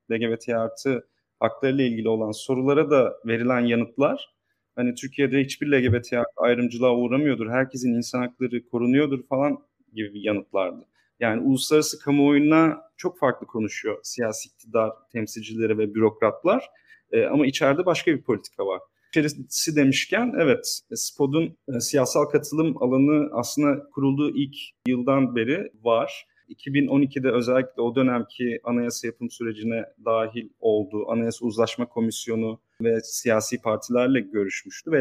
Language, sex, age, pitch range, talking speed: Turkish, male, 30-49, 115-140 Hz, 120 wpm